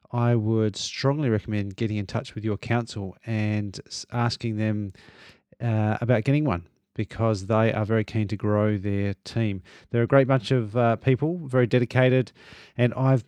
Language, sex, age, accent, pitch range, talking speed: English, male, 30-49, Australian, 105-120 Hz, 165 wpm